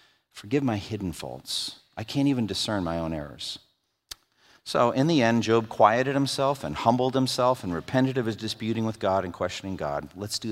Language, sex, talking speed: English, male, 190 wpm